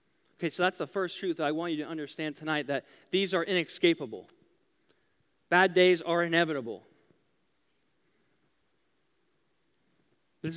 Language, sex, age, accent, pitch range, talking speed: English, male, 40-59, American, 180-235 Hz, 125 wpm